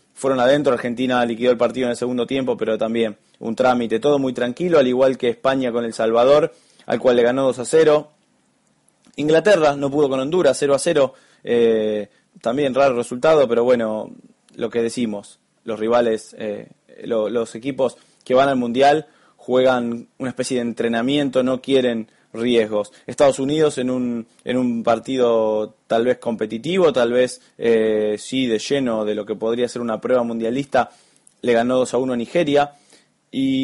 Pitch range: 120-145 Hz